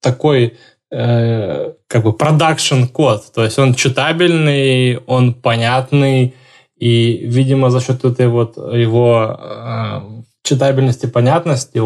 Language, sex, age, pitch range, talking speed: Russian, male, 20-39, 115-130 Hz, 105 wpm